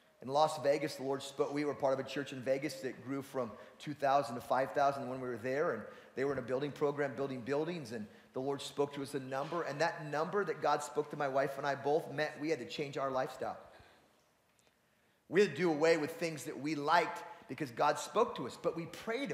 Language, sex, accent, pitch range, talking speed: English, male, American, 155-255 Hz, 240 wpm